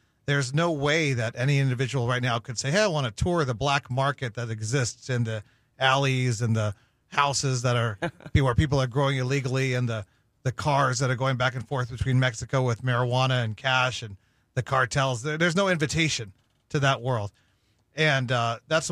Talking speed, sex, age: 195 wpm, male, 40-59